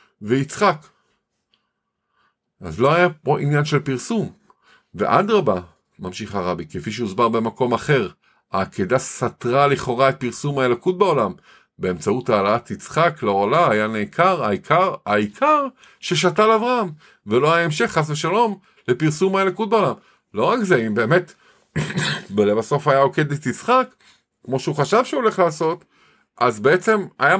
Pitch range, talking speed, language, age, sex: 120-190 Hz, 135 wpm, Hebrew, 50-69, male